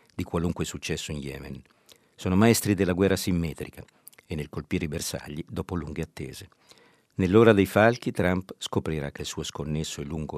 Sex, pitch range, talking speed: male, 75-95 Hz, 170 wpm